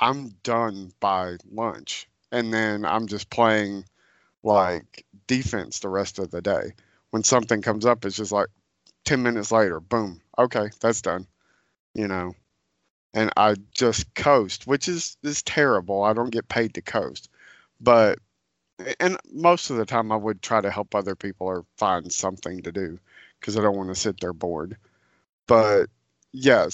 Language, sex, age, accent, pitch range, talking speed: English, male, 40-59, American, 100-125 Hz, 165 wpm